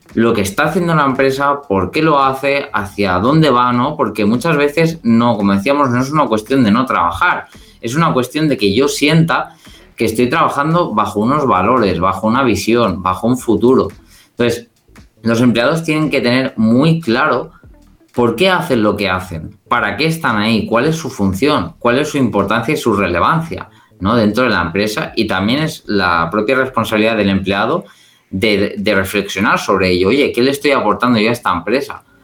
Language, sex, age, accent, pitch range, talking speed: Spanish, male, 20-39, Spanish, 105-140 Hz, 190 wpm